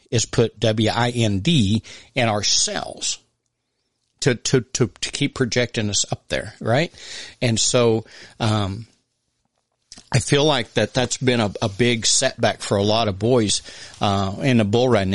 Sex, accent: male, American